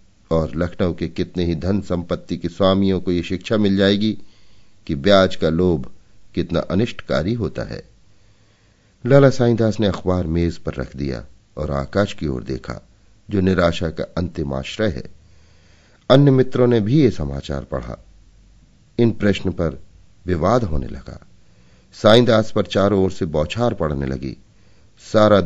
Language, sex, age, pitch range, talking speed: Hindi, male, 50-69, 85-105 Hz, 95 wpm